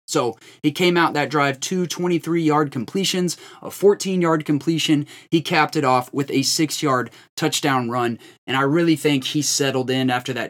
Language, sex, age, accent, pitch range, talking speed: English, male, 20-39, American, 135-170 Hz, 170 wpm